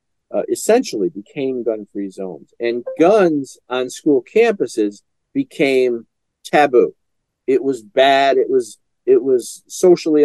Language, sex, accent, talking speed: English, male, American, 115 wpm